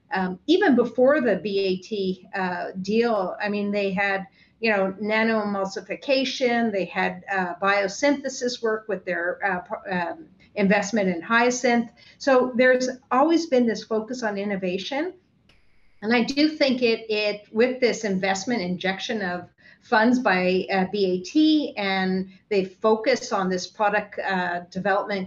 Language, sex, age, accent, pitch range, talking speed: English, female, 50-69, American, 195-245 Hz, 140 wpm